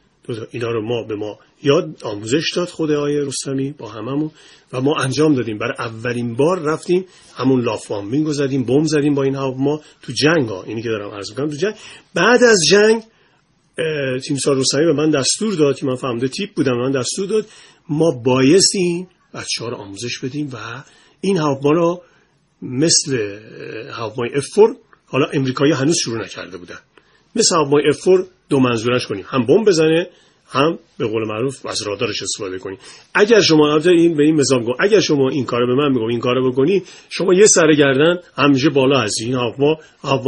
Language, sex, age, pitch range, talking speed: Persian, male, 40-59, 130-165 Hz, 175 wpm